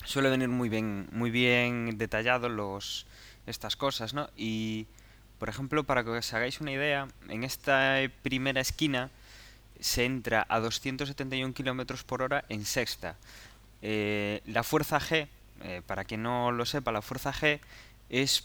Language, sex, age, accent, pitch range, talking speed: Spanish, male, 20-39, Spanish, 110-130 Hz, 155 wpm